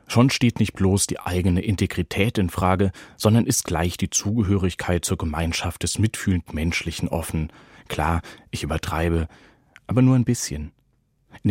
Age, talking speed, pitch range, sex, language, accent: 30-49, 145 wpm, 85-105 Hz, male, German, German